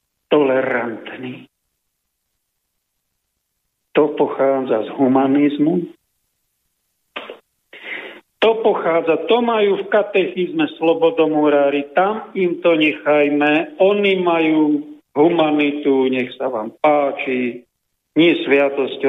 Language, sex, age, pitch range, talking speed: Slovak, male, 50-69, 140-205 Hz, 80 wpm